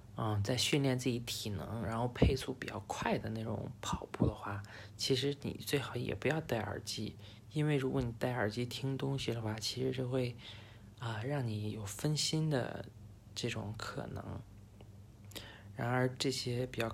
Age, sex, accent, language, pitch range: 20-39, male, native, Chinese, 105-125 Hz